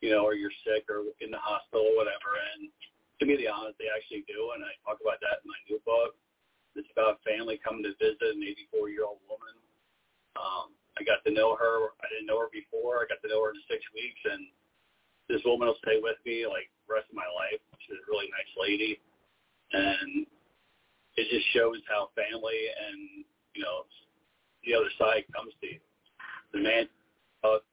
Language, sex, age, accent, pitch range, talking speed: English, male, 40-59, American, 300-455 Hz, 200 wpm